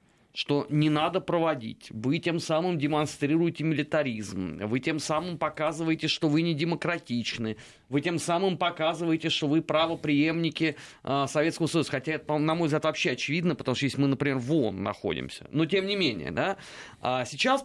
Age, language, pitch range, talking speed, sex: 30-49, Russian, 135-175 Hz, 155 wpm, male